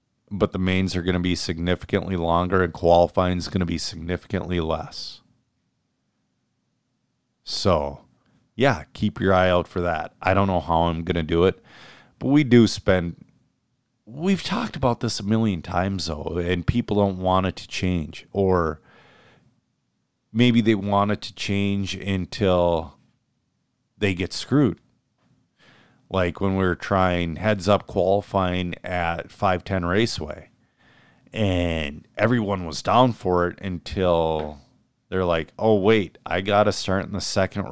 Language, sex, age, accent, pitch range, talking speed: English, male, 40-59, American, 85-105 Hz, 145 wpm